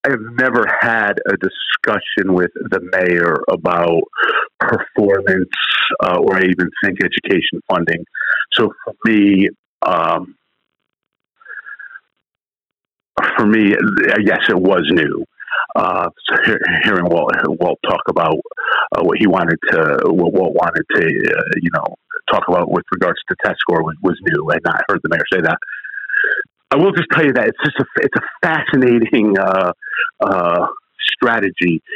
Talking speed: 150 wpm